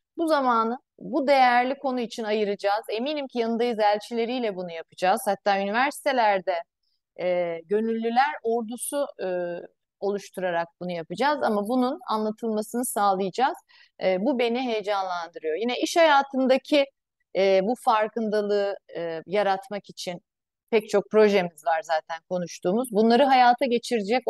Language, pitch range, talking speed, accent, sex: Turkish, 185-250 Hz, 120 wpm, native, female